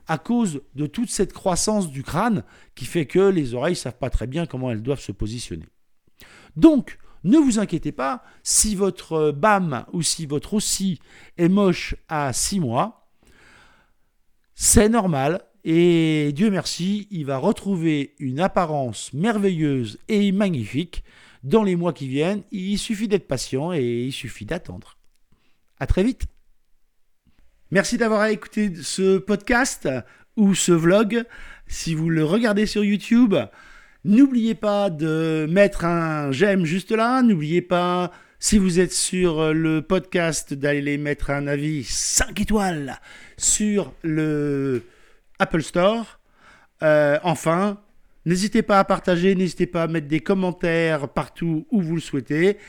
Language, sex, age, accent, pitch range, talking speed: French, male, 50-69, French, 150-200 Hz, 145 wpm